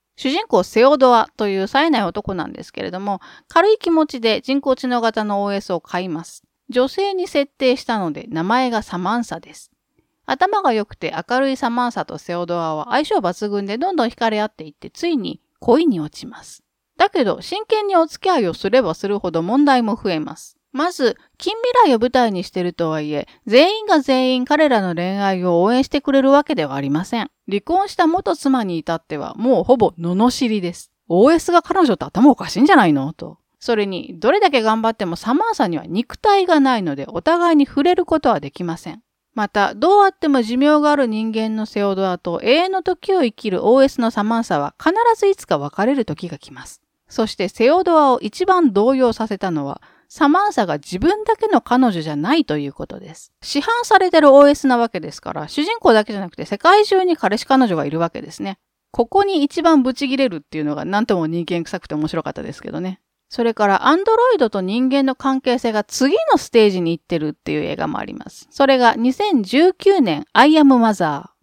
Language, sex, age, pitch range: Japanese, female, 40-59, 185-300 Hz